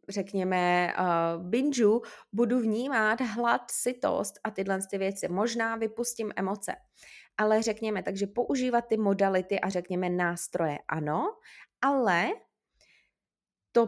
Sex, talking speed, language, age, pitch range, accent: female, 110 wpm, Czech, 20-39, 180-225 Hz, native